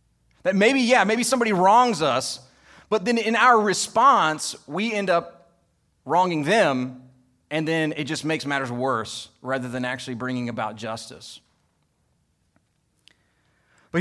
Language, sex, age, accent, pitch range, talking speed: English, male, 30-49, American, 130-200 Hz, 135 wpm